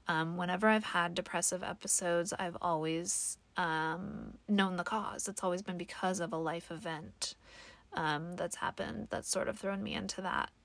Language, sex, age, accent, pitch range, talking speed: English, female, 30-49, American, 175-210 Hz, 170 wpm